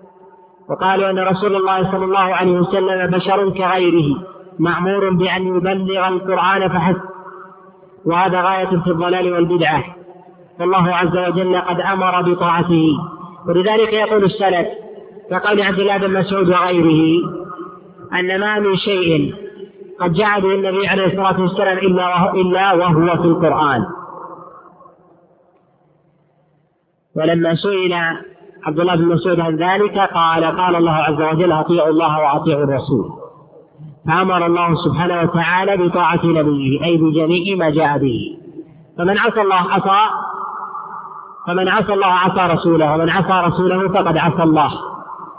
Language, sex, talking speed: Arabic, male, 120 wpm